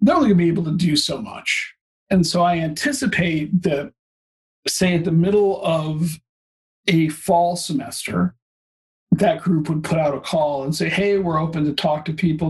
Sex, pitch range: male, 150-180 Hz